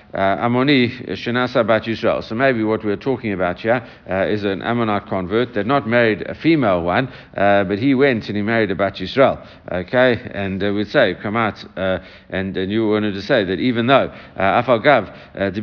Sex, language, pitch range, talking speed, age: male, English, 90-115 Hz, 215 wpm, 60-79